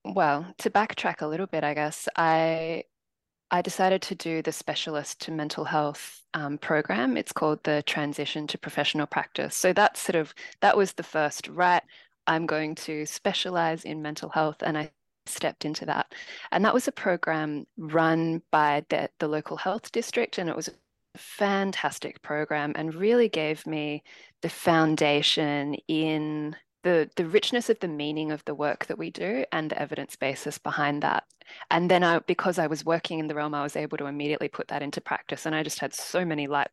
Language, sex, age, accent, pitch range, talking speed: English, female, 10-29, Australian, 150-170 Hz, 190 wpm